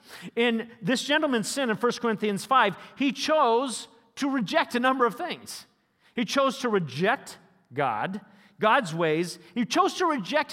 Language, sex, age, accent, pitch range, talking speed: English, male, 40-59, American, 190-275 Hz, 155 wpm